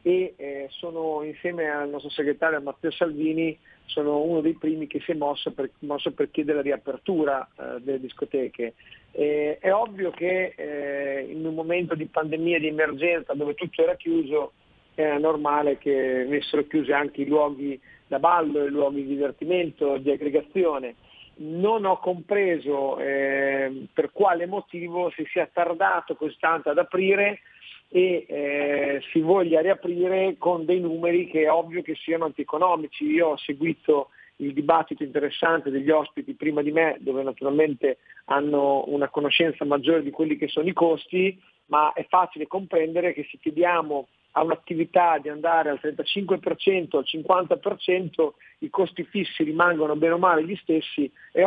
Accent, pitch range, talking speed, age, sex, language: native, 145-175 Hz, 155 wpm, 40-59, male, Italian